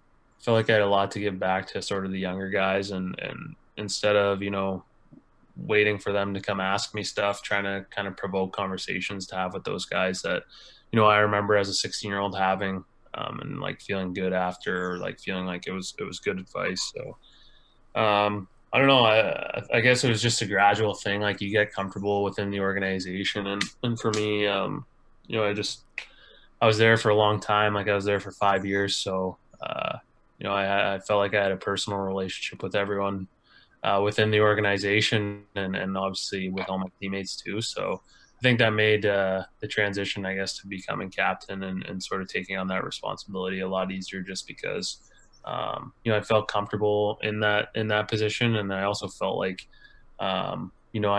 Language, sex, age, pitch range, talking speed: English, male, 20-39, 95-105 Hz, 215 wpm